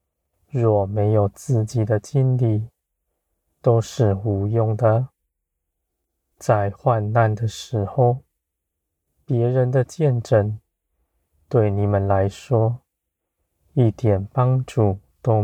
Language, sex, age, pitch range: Chinese, male, 20-39, 80-115 Hz